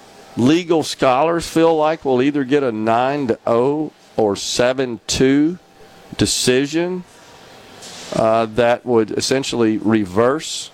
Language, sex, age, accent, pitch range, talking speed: English, male, 50-69, American, 115-150 Hz, 100 wpm